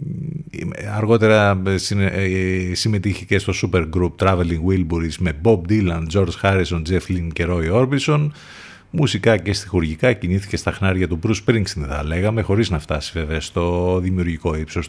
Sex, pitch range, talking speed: male, 85-110 Hz, 145 wpm